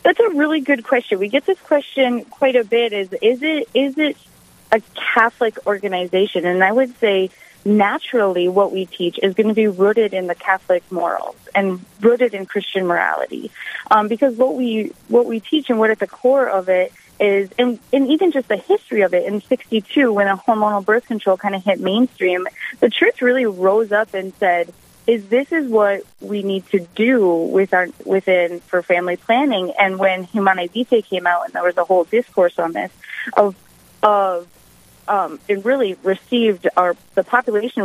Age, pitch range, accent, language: 30-49, 185-235 Hz, American, English